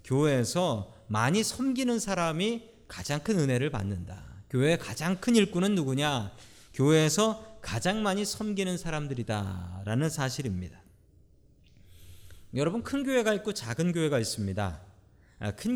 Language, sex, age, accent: Korean, male, 40-59, native